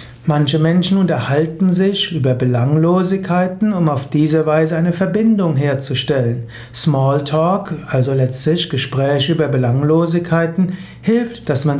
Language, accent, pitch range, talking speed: German, German, 140-175 Hz, 115 wpm